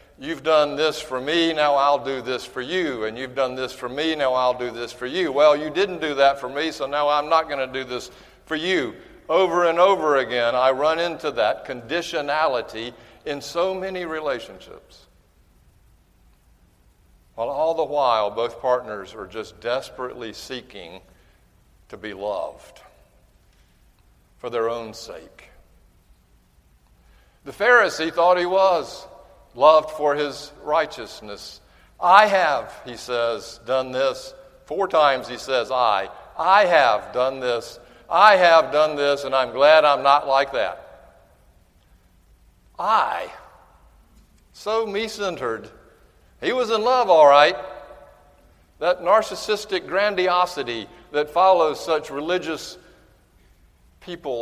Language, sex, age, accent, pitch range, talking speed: English, male, 60-79, American, 115-165 Hz, 135 wpm